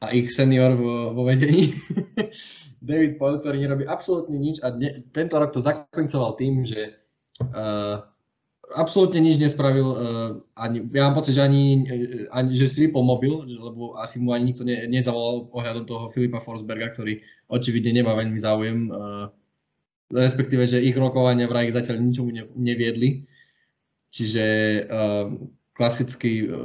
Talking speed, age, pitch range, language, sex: 150 wpm, 20-39, 110-130 Hz, Slovak, male